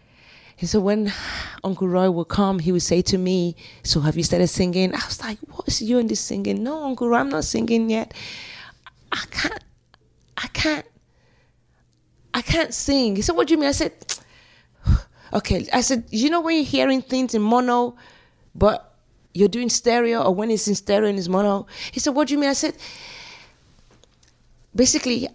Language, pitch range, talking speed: English, 165-230 Hz, 190 wpm